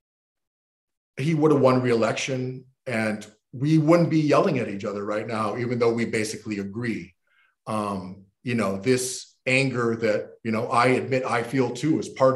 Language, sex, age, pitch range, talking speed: English, male, 40-59, 115-140 Hz, 170 wpm